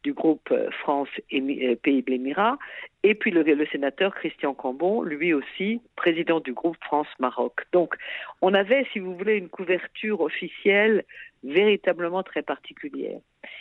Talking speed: 130 wpm